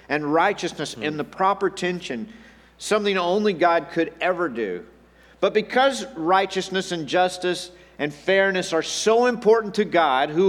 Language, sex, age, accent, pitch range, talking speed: English, male, 50-69, American, 145-205 Hz, 145 wpm